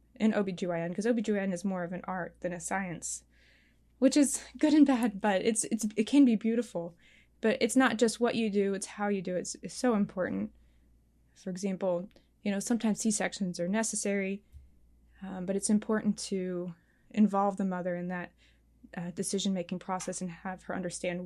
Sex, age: female, 20-39